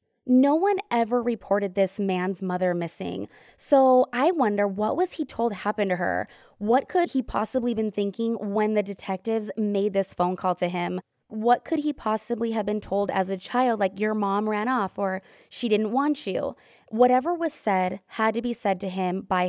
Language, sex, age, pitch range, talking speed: English, female, 20-39, 190-245 Hz, 195 wpm